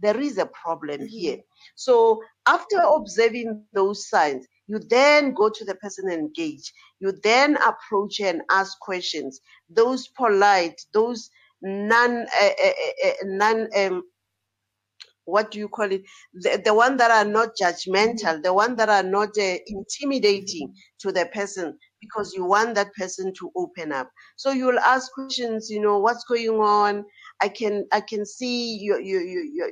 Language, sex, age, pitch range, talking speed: English, female, 50-69, 200-240 Hz, 160 wpm